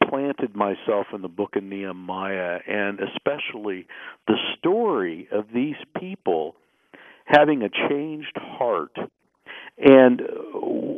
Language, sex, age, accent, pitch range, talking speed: English, male, 50-69, American, 105-155 Hz, 110 wpm